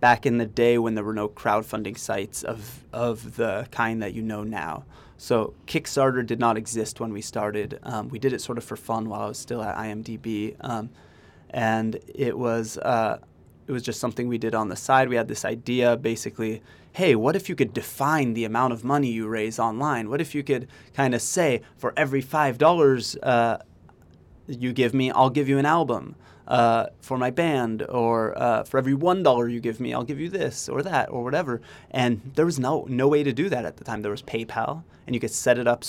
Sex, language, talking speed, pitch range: male, English, 220 wpm, 115-135 Hz